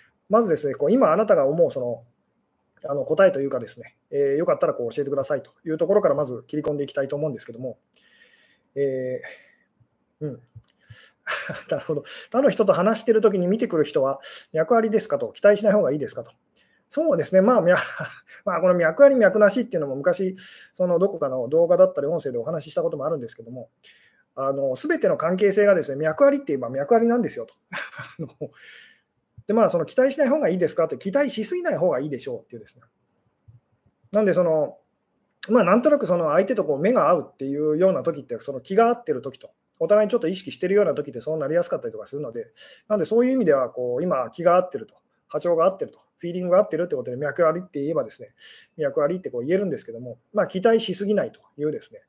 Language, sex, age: Japanese, male, 20-39